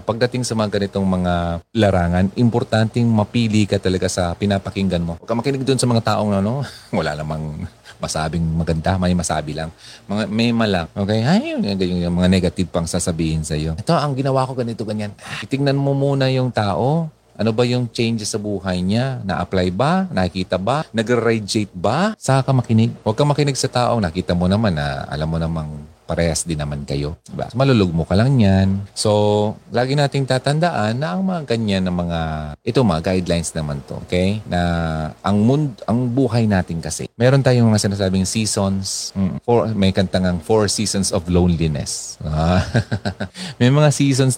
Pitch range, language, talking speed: 90-120 Hz, Filipino, 175 wpm